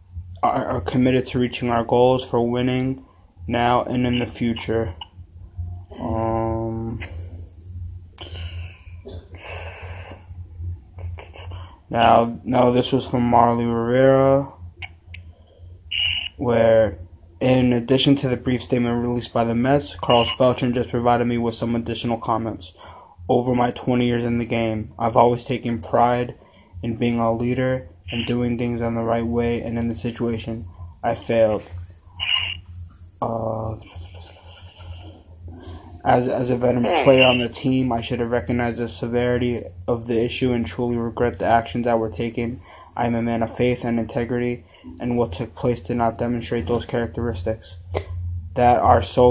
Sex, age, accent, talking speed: male, 20-39, American, 140 wpm